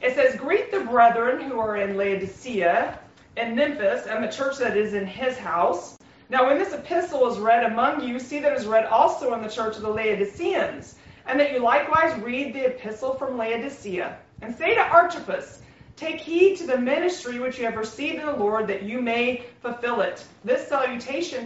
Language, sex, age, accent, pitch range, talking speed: English, female, 30-49, American, 230-290 Hz, 200 wpm